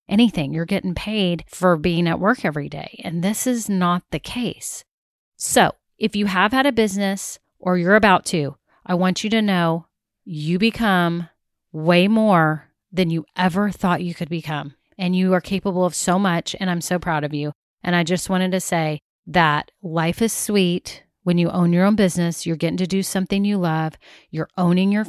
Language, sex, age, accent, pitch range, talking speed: English, female, 30-49, American, 170-225 Hz, 195 wpm